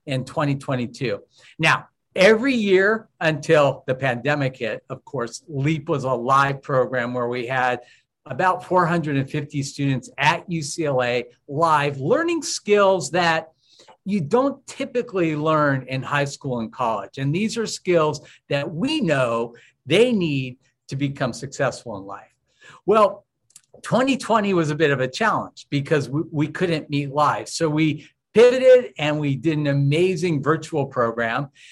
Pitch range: 130-165 Hz